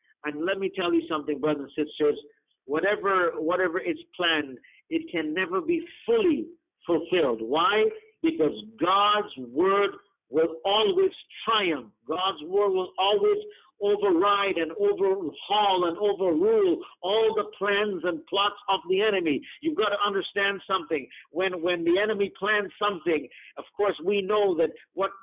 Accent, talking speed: American, 145 wpm